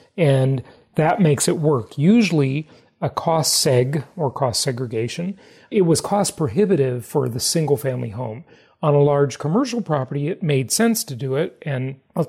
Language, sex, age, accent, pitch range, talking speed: English, male, 40-59, American, 135-170 Hz, 165 wpm